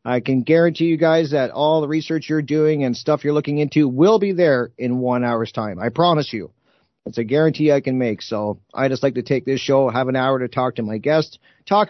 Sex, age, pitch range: male, 50-69, 125-150 Hz